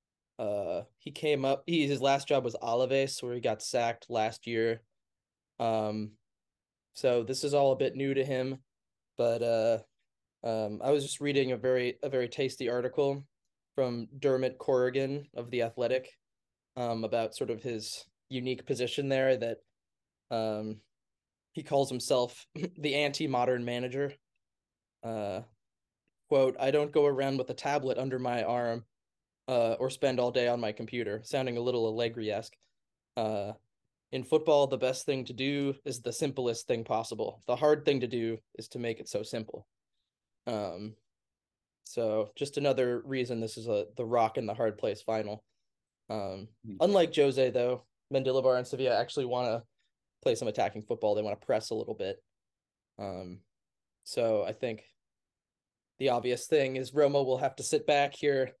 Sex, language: male, English